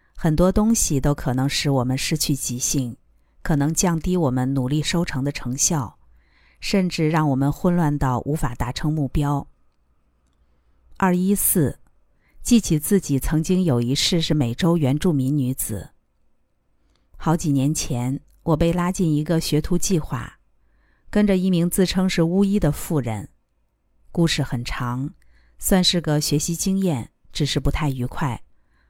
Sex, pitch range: female, 135-175 Hz